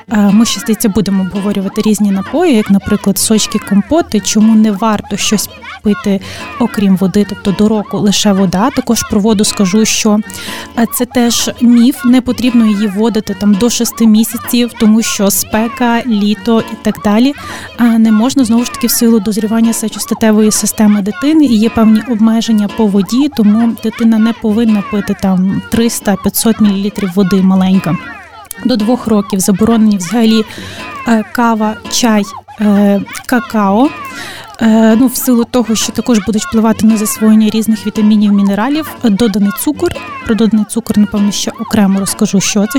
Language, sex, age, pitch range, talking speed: Ukrainian, female, 20-39, 205-235 Hz, 145 wpm